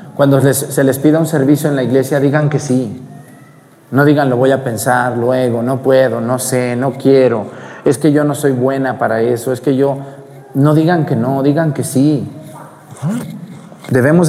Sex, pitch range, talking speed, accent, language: male, 130-155 Hz, 185 wpm, Mexican, Spanish